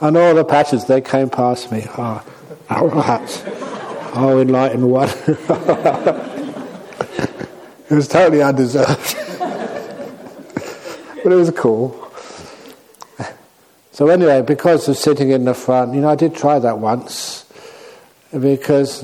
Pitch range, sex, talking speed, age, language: 130-150 Hz, male, 115 wpm, 60-79, English